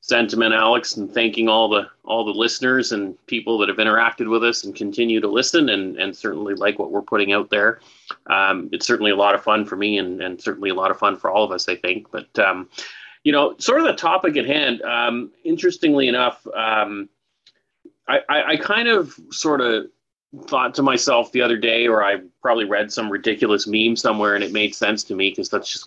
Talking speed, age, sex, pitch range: 220 wpm, 30-49, male, 100-125 Hz